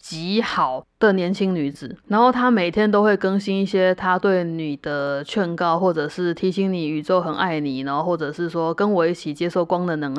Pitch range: 165-220 Hz